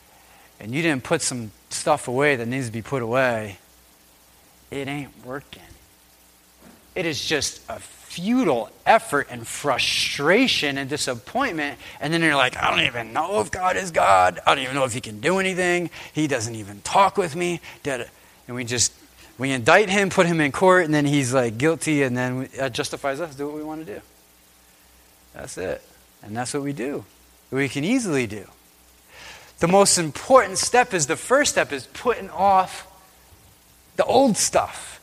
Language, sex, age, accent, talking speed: English, male, 30-49, American, 180 wpm